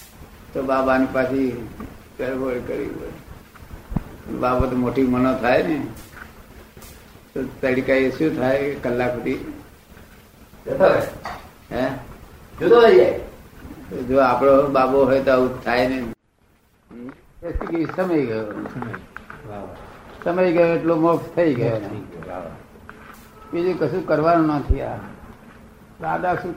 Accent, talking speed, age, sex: native, 85 wpm, 60-79, male